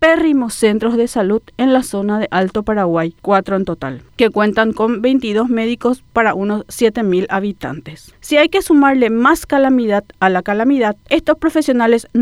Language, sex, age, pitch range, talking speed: Spanish, female, 40-59, 210-265 Hz, 160 wpm